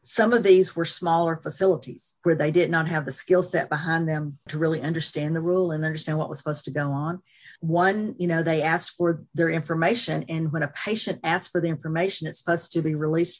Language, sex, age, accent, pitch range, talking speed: English, female, 50-69, American, 155-185 Hz, 225 wpm